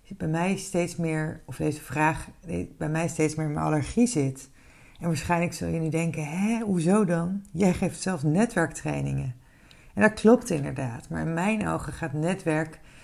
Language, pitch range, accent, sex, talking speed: Dutch, 155-205 Hz, Dutch, female, 180 wpm